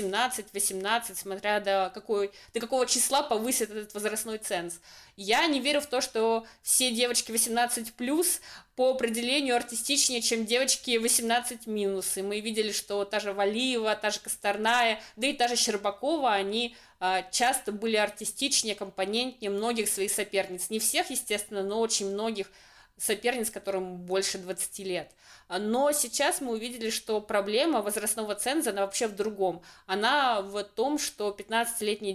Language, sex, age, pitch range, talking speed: Russian, female, 20-39, 200-235 Hz, 145 wpm